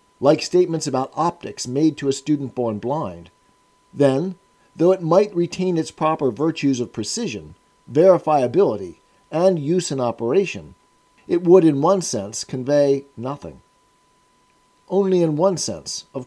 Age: 50-69